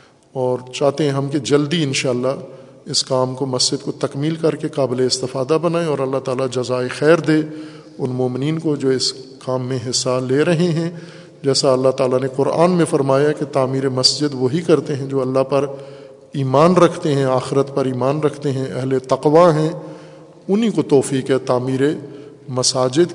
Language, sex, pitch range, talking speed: Urdu, male, 130-155 Hz, 180 wpm